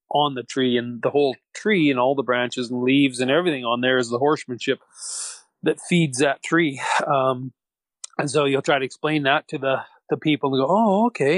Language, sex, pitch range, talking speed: English, male, 130-155 Hz, 210 wpm